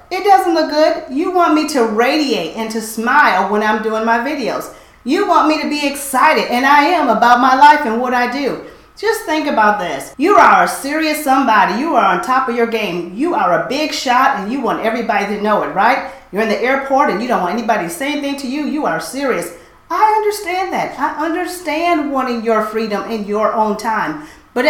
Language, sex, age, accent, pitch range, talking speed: English, female, 40-59, American, 220-310 Hz, 225 wpm